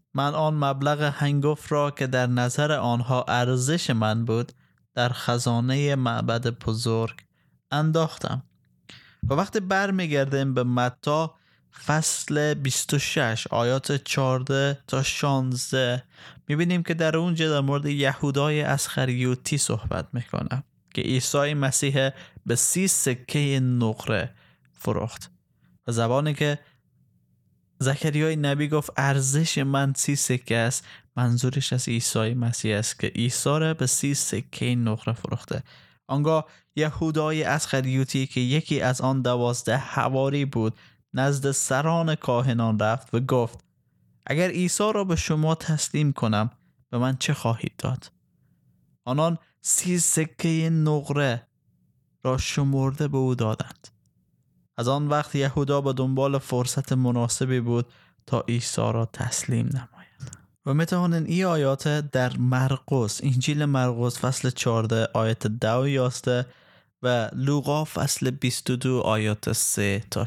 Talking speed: 125 wpm